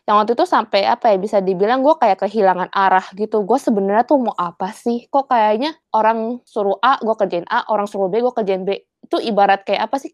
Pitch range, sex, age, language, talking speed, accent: 190-230 Hz, female, 20-39, Indonesian, 225 wpm, native